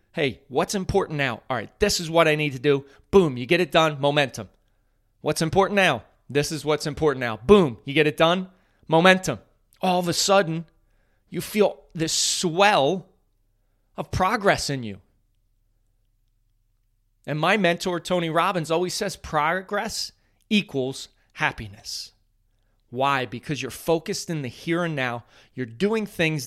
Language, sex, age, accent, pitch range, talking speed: English, male, 30-49, American, 110-175 Hz, 150 wpm